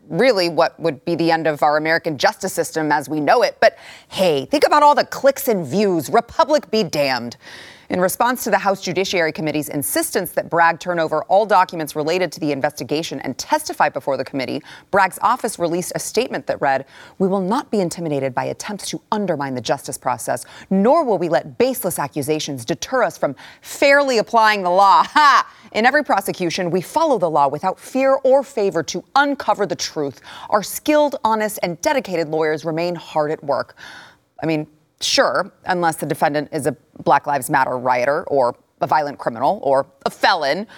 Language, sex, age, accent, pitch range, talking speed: English, female, 30-49, American, 160-225 Hz, 185 wpm